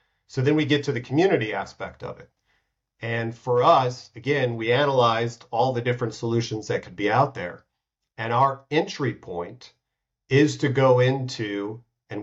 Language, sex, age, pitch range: English, male, 40-59, 115-135 Hz